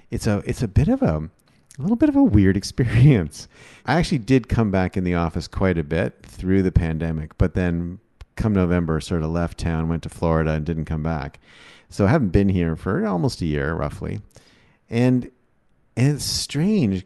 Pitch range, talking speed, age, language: 85-105 Hz, 200 wpm, 40-59, English